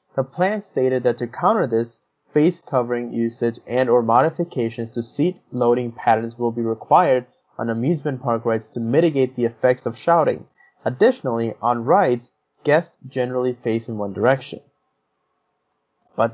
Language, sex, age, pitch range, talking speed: English, male, 20-39, 110-130 Hz, 145 wpm